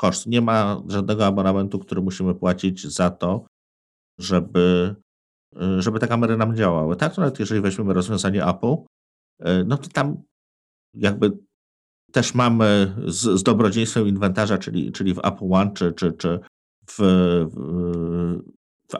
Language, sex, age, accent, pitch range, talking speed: Polish, male, 50-69, native, 85-105 Hz, 135 wpm